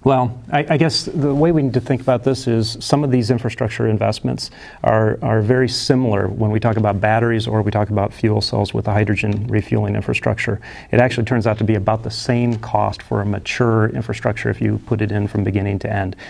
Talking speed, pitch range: 225 wpm, 105-120 Hz